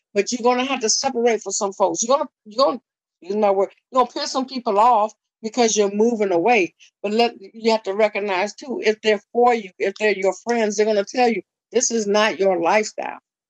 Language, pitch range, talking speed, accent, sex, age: English, 185-220 Hz, 225 wpm, American, female, 50-69